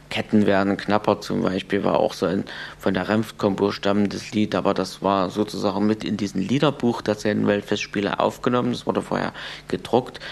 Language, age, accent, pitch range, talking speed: German, 50-69, German, 95-110 Hz, 175 wpm